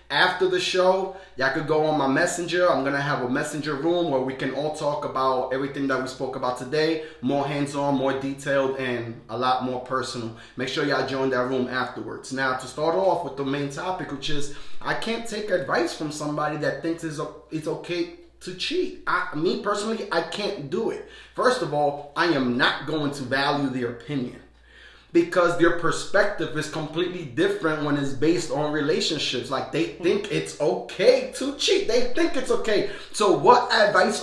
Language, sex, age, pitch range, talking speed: English, male, 30-49, 135-175 Hz, 190 wpm